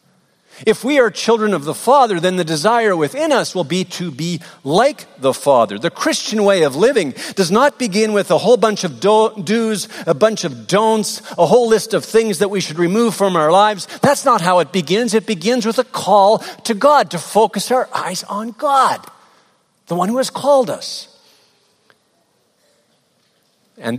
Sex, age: male, 50-69